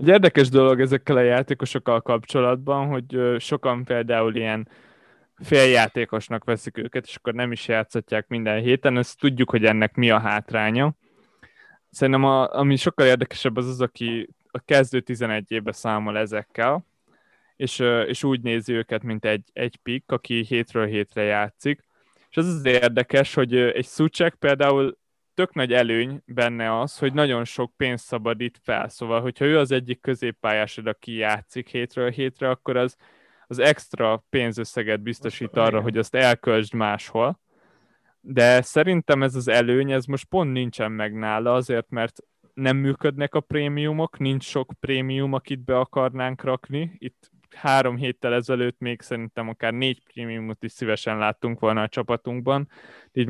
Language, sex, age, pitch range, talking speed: Hungarian, male, 20-39, 115-135 Hz, 150 wpm